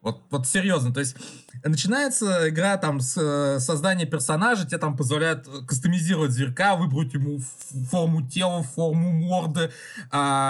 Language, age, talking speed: Russian, 20-39, 145 wpm